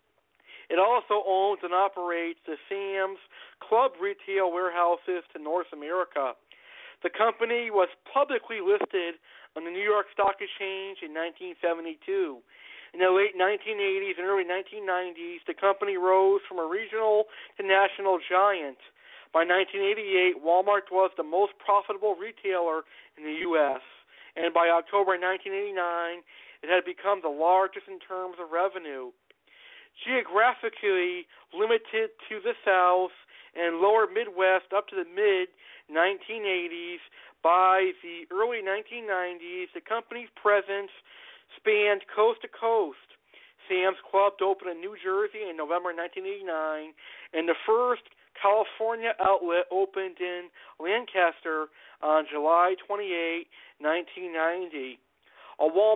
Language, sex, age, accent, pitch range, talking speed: English, male, 50-69, American, 175-235 Hz, 120 wpm